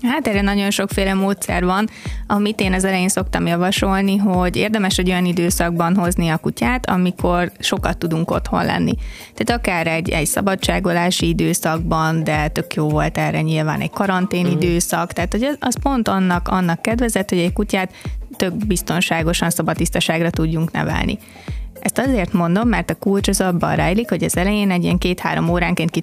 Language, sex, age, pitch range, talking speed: Hungarian, female, 20-39, 170-205 Hz, 160 wpm